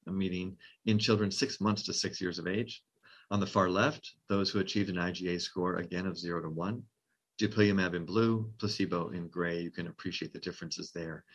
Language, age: English, 40-59